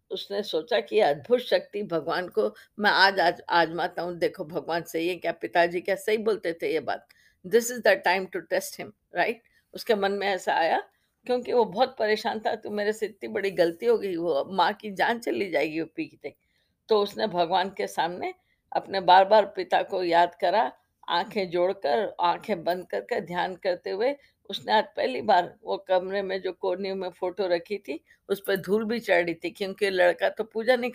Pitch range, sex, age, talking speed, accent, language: 180-225 Hz, female, 50-69, 200 wpm, native, Hindi